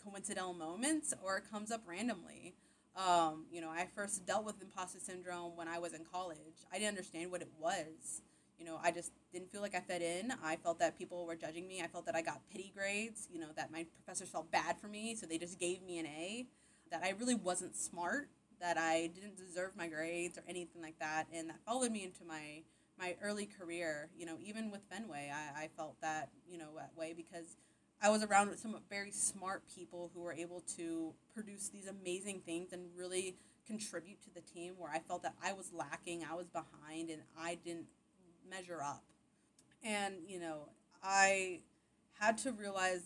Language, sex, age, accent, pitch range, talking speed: English, female, 20-39, American, 165-195 Hz, 205 wpm